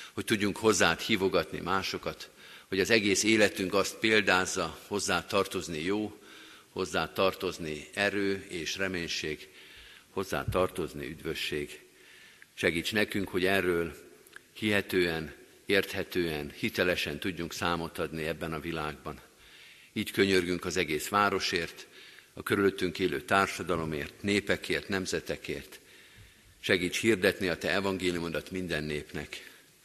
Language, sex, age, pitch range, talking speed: Hungarian, male, 50-69, 85-100 Hz, 105 wpm